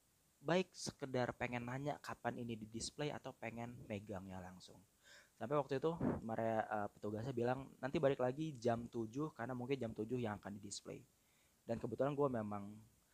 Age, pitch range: 20-39, 110-130 Hz